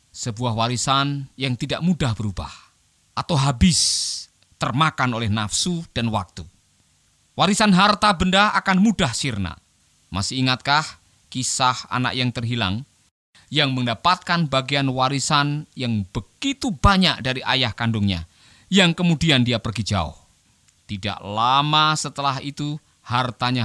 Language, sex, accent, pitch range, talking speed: Indonesian, male, native, 105-140 Hz, 115 wpm